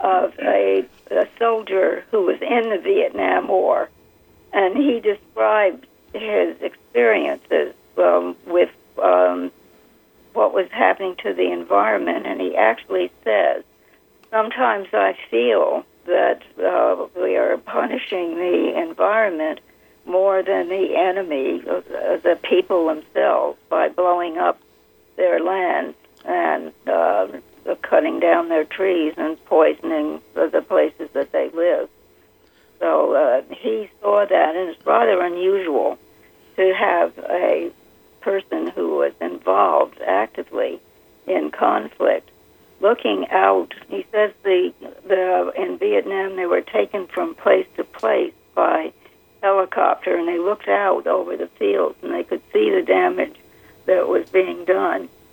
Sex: female